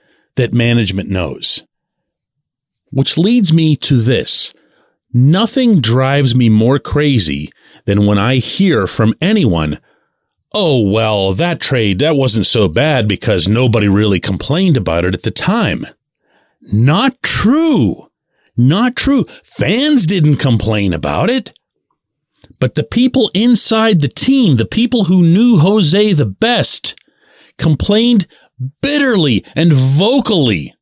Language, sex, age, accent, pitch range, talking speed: English, male, 40-59, American, 120-200 Hz, 120 wpm